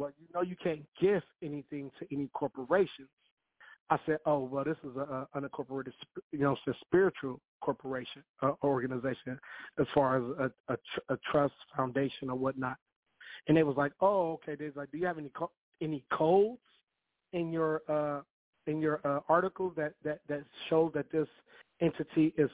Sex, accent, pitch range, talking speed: male, American, 135-160 Hz, 185 wpm